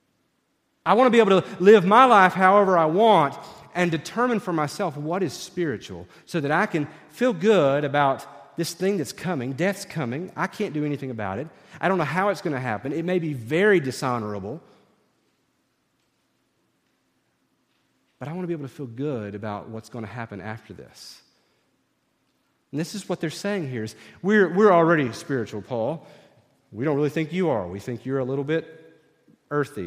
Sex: male